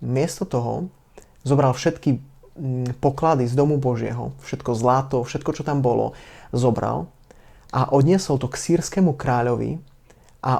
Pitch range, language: 125-145 Hz, Slovak